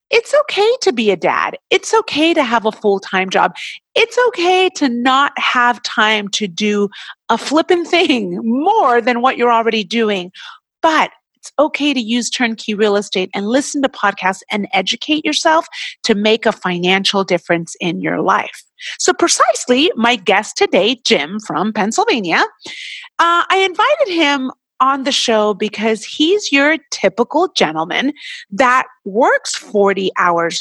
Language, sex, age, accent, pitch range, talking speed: English, female, 30-49, American, 220-340 Hz, 150 wpm